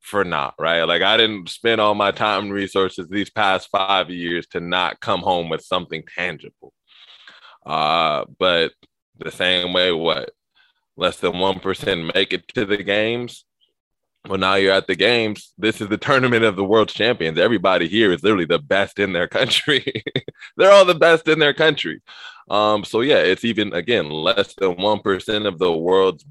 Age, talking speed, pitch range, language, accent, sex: 20-39, 185 wpm, 90-120 Hz, English, American, male